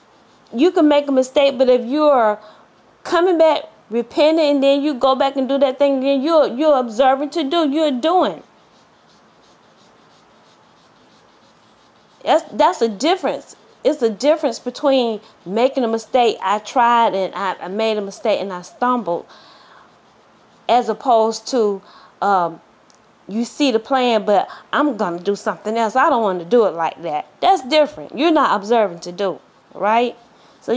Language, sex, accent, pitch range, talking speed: English, female, American, 220-285 Hz, 160 wpm